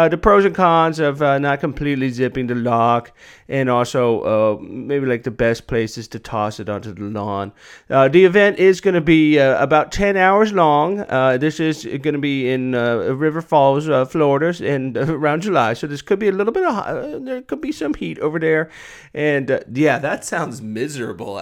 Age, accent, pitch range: 30-49, American, 120-165 Hz